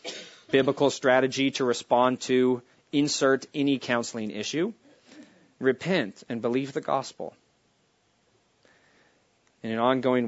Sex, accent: male, American